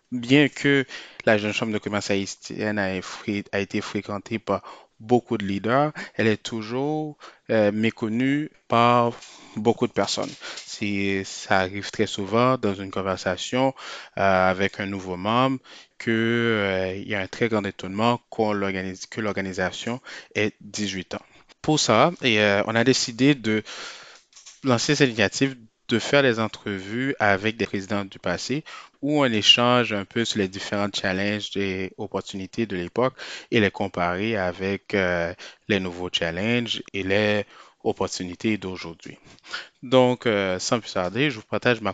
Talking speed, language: 145 wpm, French